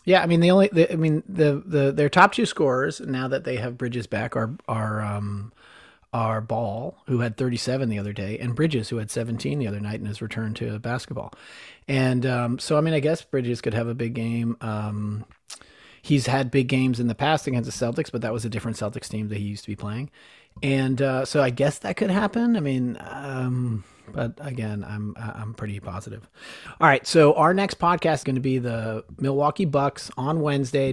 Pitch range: 115-145 Hz